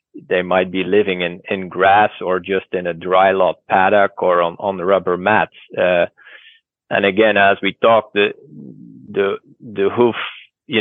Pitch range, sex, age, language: 90-105 Hz, male, 30-49, English